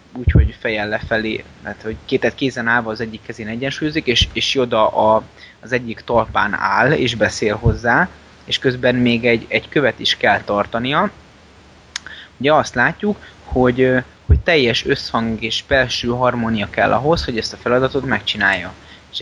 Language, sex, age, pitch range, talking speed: Hungarian, male, 20-39, 110-130 Hz, 155 wpm